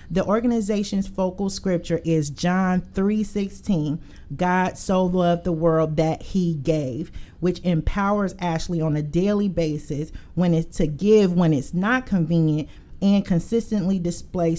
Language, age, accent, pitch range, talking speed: English, 40-59, American, 170-205 Hz, 135 wpm